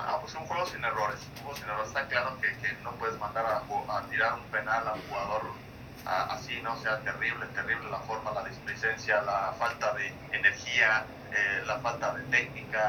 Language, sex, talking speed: English, male, 210 wpm